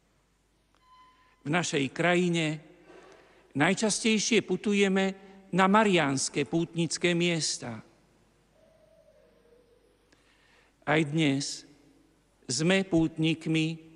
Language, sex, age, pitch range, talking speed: Slovak, male, 50-69, 150-190 Hz, 55 wpm